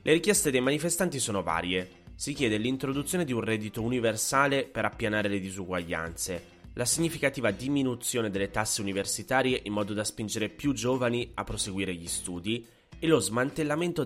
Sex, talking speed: male, 155 wpm